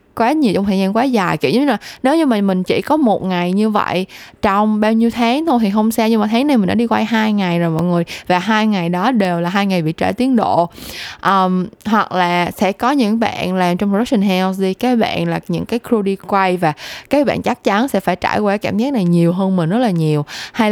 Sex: female